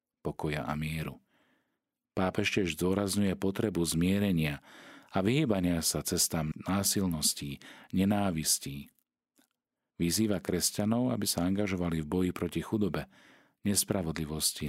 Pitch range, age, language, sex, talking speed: 80-95 Hz, 40-59, Slovak, male, 80 wpm